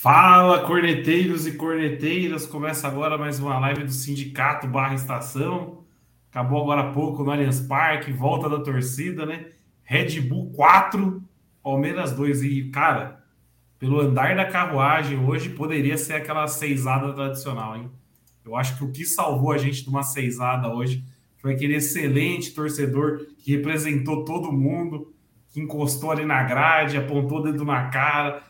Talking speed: 150 wpm